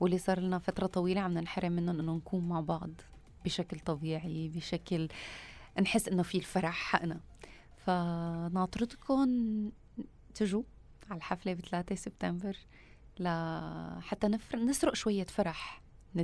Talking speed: 120 wpm